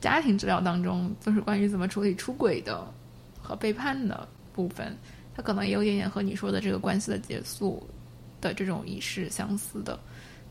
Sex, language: female, Chinese